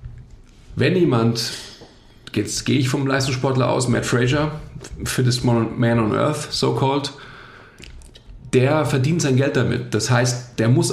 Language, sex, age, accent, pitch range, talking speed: German, male, 40-59, German, 115-135 Hz, 130 wpm